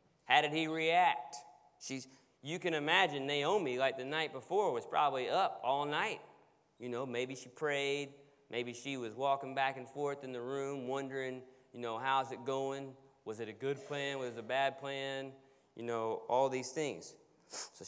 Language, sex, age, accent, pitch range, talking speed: English, male, 30-49, American, 125-155 Hz, 185 wpm